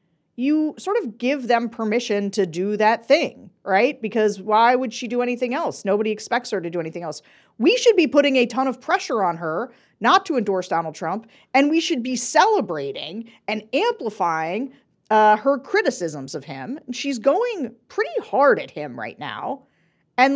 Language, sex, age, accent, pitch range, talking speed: English, female, 40-59, American, 200-275 Hz, 180 wpm